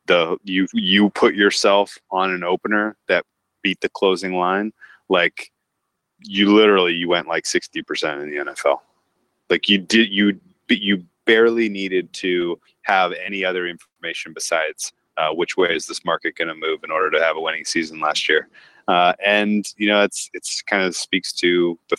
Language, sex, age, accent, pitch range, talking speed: English, male, 30-49, American, 90-105 Hz, 175 wpm